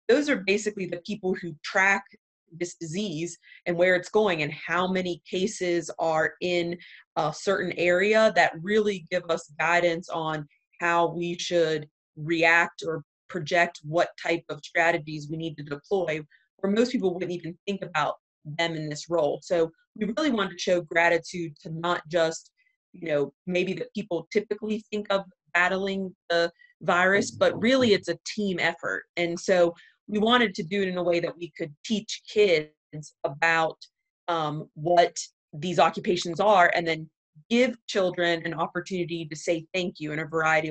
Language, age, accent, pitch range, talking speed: English, 30-49, American, 165-195 Hz, 170 wpm